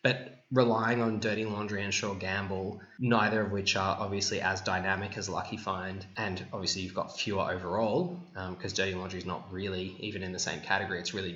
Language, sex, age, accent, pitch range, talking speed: English, male, 10-29, Australian, 95-115 Hz, 200 wpm